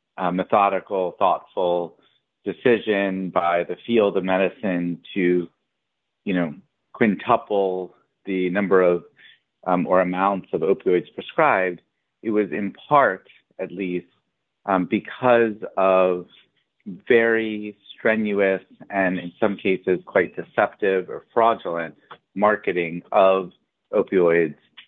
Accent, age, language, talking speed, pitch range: American, 30-49, English, 105 wpm, 90-105 Hz